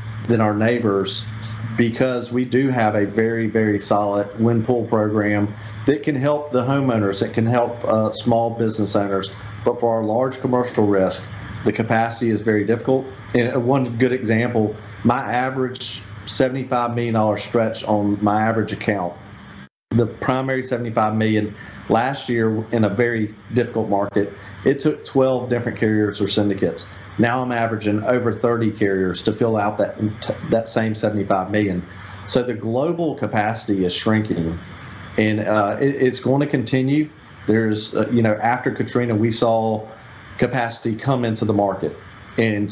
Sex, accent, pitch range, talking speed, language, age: male, American, 105-120 Hz, 155 wpm, English, 40-59